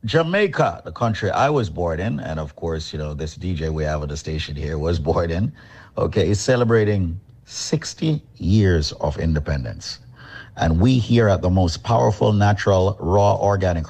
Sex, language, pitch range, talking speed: male, English, 85-115 Hz, 175 wpm